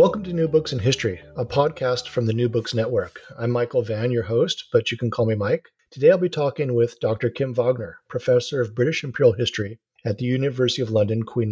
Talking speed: 225 wpm